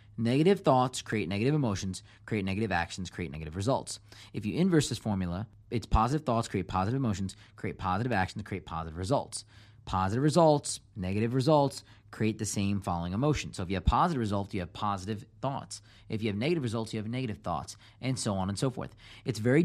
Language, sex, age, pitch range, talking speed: English, male, 30-49, 100-130 Hz, 195 wpm